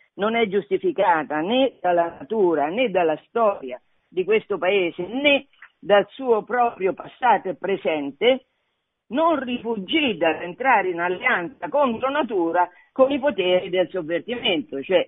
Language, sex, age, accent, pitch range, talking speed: Italian, female, 40-59, native, 170-250 Hz, 130 wpm